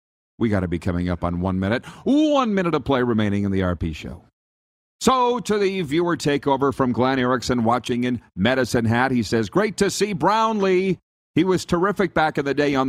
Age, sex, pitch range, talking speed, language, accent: 50-69, male, 110-150 Hz, 205 wpm, English, American